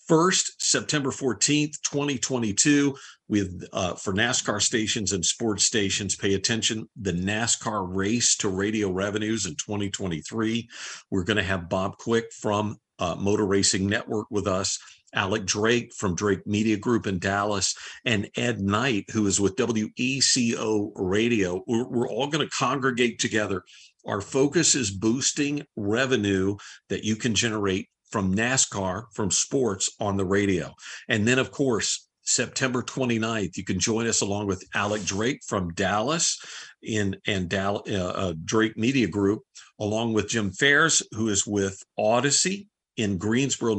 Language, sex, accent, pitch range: English, male, American, 100-120 Hz